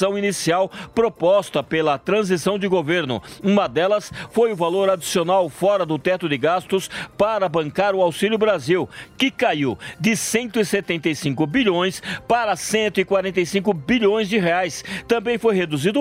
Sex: male